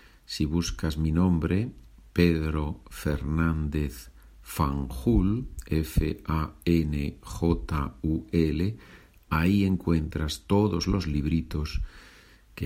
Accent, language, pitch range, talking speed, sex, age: Spanish, Spanish, 75-95 Hz, 65 wpm, male, 50-69